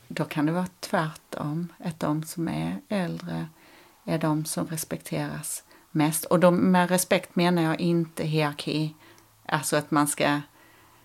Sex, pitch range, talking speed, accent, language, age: female, 155-180 Hz, 140 wpm, native, Swedish, 40-59